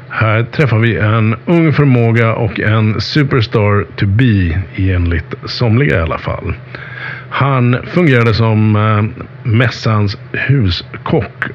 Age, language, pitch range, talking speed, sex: 50-69, Swedish, 95-125 Hz, 110 wpm, male